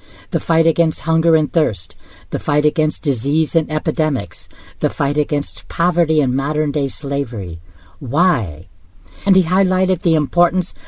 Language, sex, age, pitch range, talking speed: English, female, 50-69, 125-170 Hz, 140 wpm